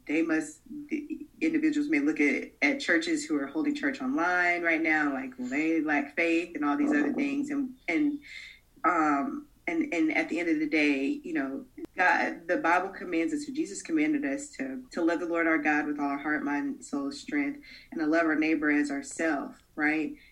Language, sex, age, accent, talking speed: English, female, 20-39, American, 205 wpm